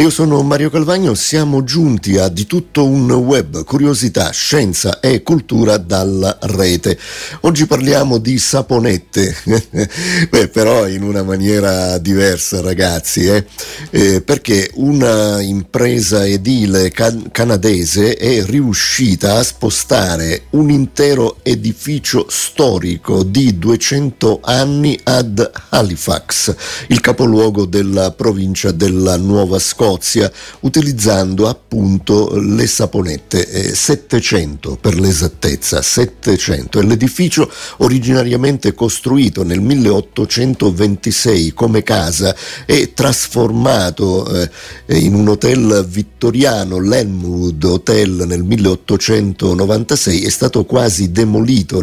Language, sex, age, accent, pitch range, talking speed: Italian, male, 50-69, native, 95-125 Hz, 100 wpm